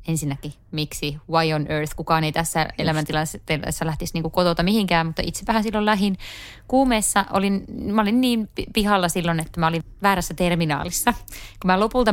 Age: 20-39